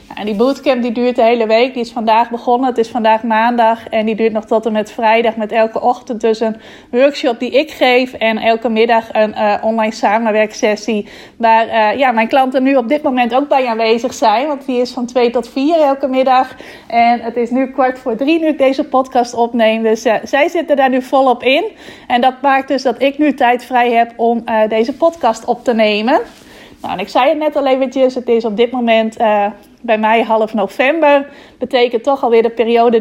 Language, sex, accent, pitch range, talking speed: Dutch, female, Dutch, 225-265 Hz, 220 wpm